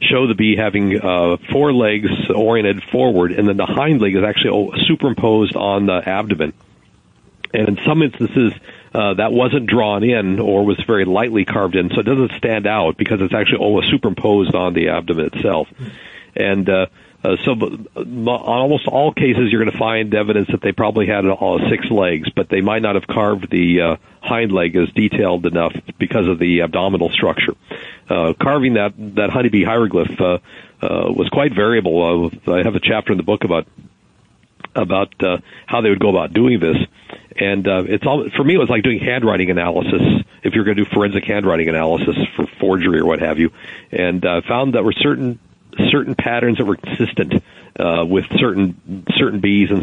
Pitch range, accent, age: 95-120 Hz, American, 50-69